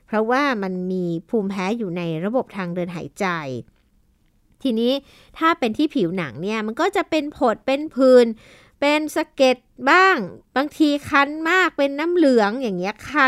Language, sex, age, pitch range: Thai, female, 60-79, 200-280 Hz